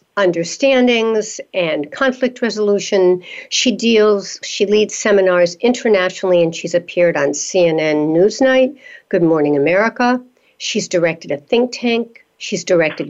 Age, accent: 60-79, American